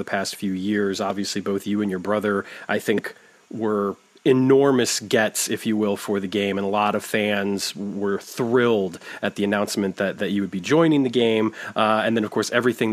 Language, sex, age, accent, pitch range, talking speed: English, male, 30-49, American, 100-125 Hz, 210 wpm